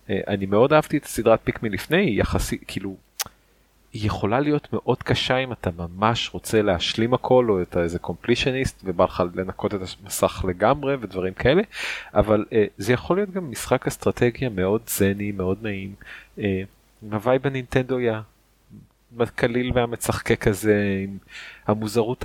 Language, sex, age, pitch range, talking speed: Hebrew, male, 30-49, 95-115 Hz, 150 wpm